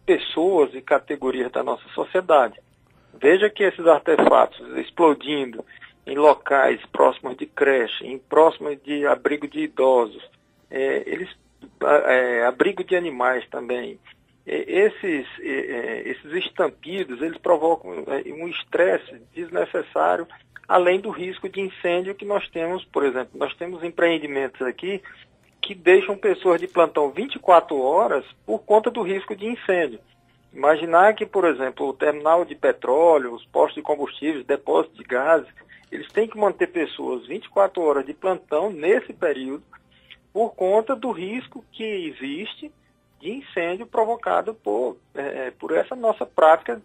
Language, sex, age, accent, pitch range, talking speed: Portuguese, male, 40-59, Brazilian, 145-235 Hz, 140 wpm